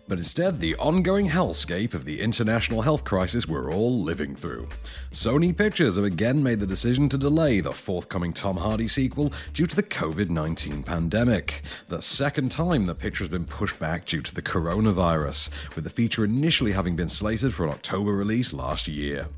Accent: British